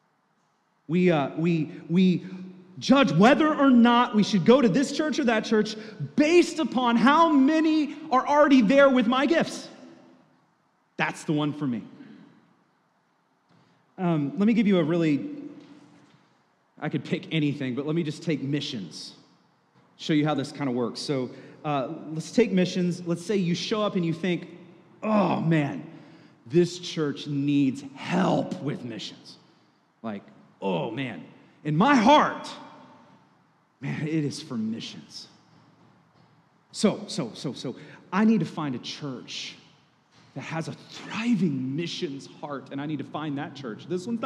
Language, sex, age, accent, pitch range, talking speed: English, male, 30-49, American, 160-240 Hz, 155 wpm